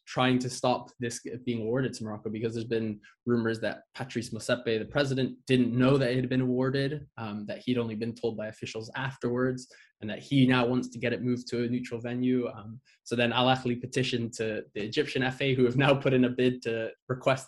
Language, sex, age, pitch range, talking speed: English, male, 20-39, 115-125 Hz, 225 wpm